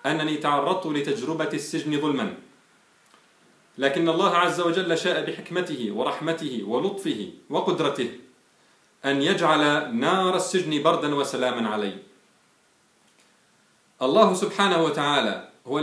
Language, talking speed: Arabic, 95 wpm